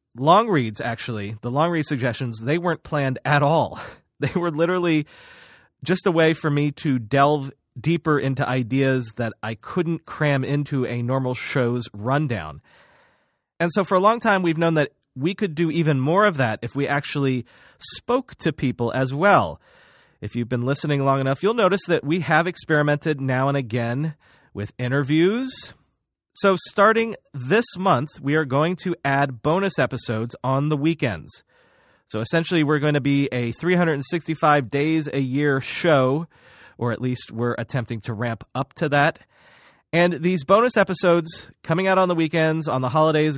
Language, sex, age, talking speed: English, male, 30-49, 170 wpm